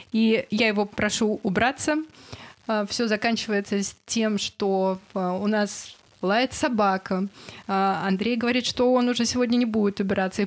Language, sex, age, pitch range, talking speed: Russian, female, 20-39, 210-250 Hz, 130 wpm